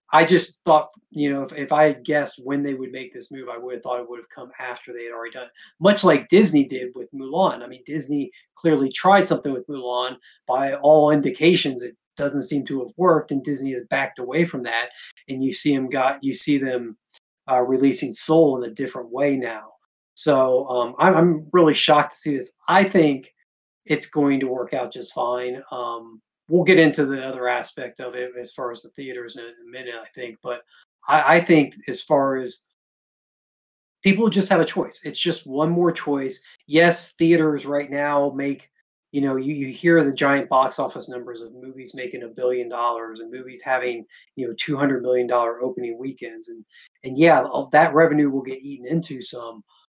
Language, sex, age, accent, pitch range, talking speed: English, male, 30-49, American, 125-155 Hz, 205 wpm